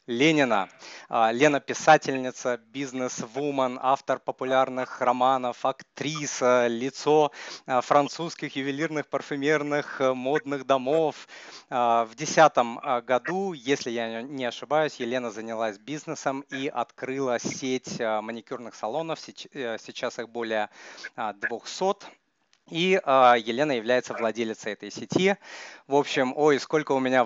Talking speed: 100 wpm